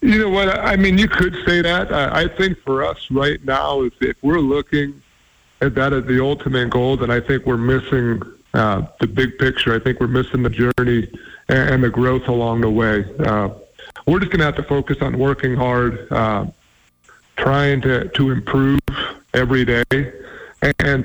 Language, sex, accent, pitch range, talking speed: English, male, American, 120-135 Hz, 180 wpm